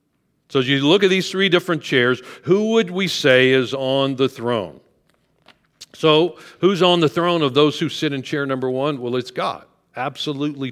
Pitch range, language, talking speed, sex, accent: 120-155 Hz, English, 190 wpm, male, American